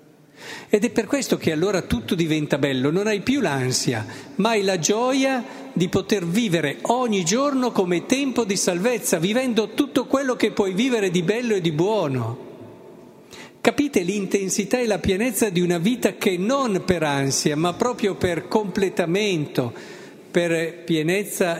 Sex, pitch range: male, 150-195 Hz